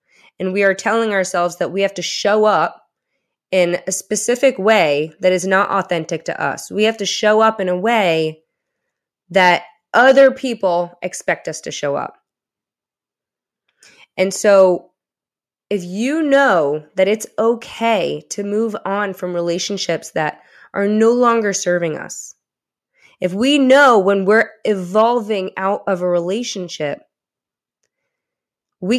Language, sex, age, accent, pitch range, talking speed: English, female, 20-39, American, 180-225 Hz, 140 wpm